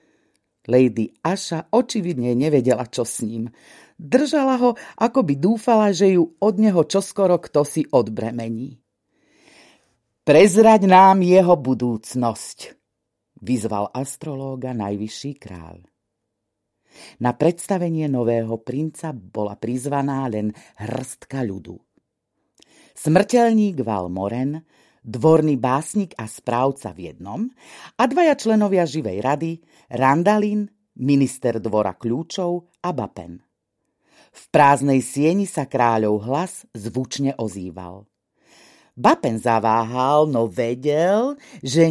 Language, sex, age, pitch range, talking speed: Slovak, female, 40-59, 115-180 Hz, 95 wpm